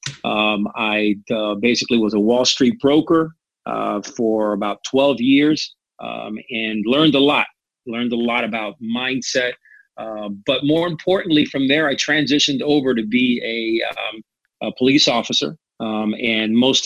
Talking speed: 155 wpm